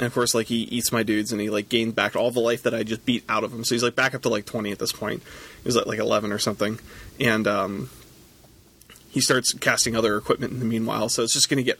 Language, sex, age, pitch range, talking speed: English, male, 20-39, 110-120 Hz, 285 wpm